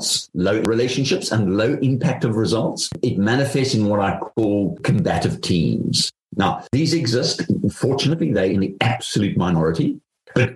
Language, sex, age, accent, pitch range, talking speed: English, male, 50-69, British, 90-125 Hz, 140 wpm